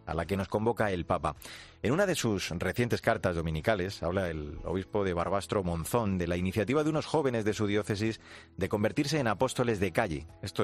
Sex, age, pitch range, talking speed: male, 30-49, 85-110 Hz, 205 wpm